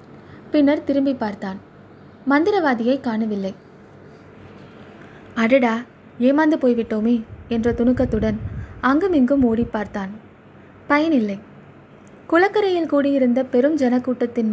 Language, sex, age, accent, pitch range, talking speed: Tamil, female, 20-39, native, 225-275 Hz, 75 wpm